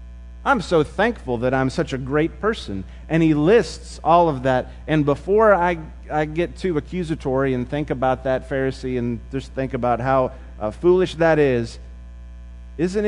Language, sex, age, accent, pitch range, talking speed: English, male, 30-49, American, 110-160 Hz, 170 wpm